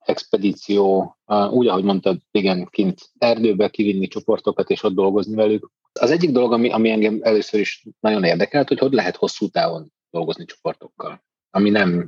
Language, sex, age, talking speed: Hungarian, male, 30-49, 165 wpm